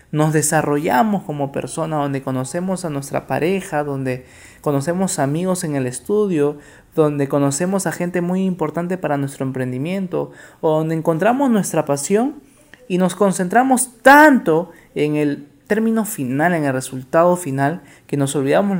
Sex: male